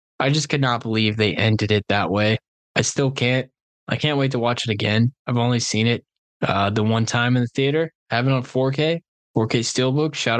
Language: English